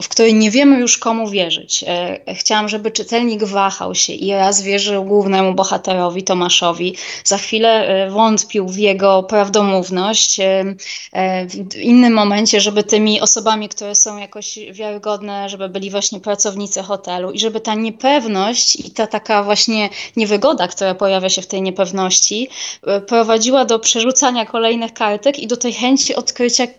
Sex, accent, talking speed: female, native, 145 wpm